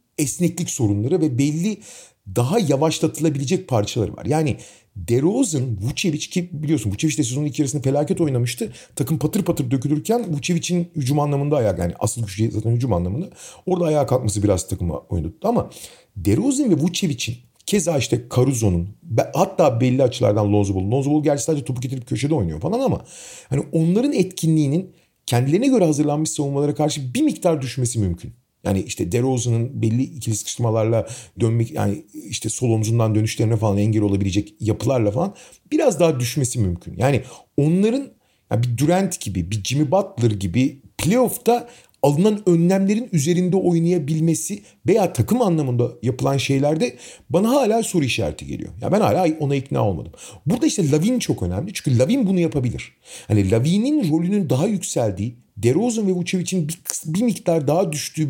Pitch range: 115-180 Hz